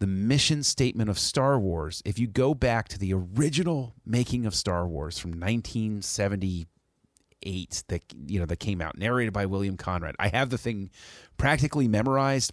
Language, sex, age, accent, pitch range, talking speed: English, male, 30-49, American, 95-115 Hz, 170 wpm